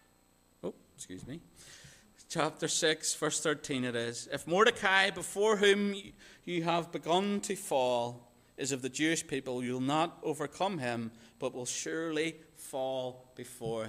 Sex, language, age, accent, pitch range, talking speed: male, English, 40-59, British, 110-155 Hz, 140 wpm